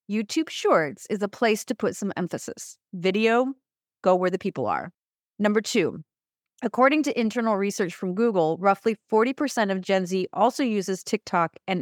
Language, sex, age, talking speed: English, female, 30-49, 160 wpm